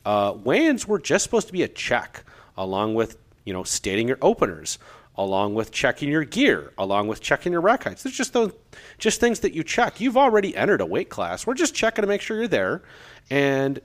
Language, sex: English, male